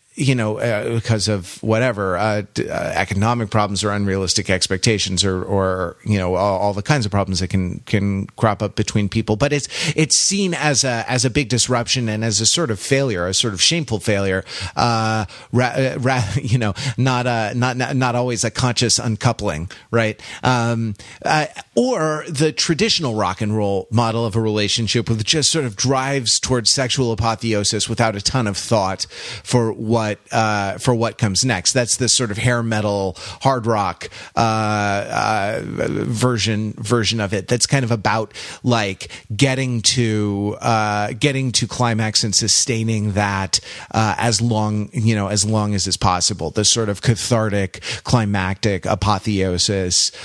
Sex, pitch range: male, 105-125 Hz